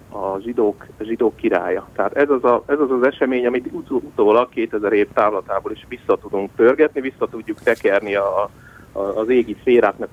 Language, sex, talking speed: Hungarian, male, 165 wpm